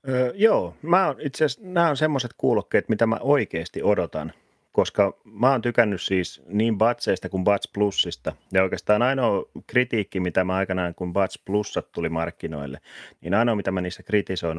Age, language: 30-49, Finnish